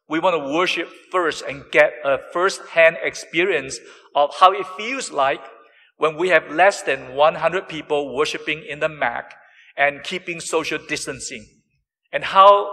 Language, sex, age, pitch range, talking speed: English, male, 50-69, 145-185 Hz, 150 wpm